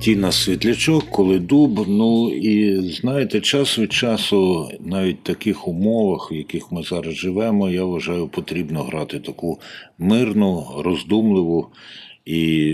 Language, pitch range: Ukrainian, 85-105 Hz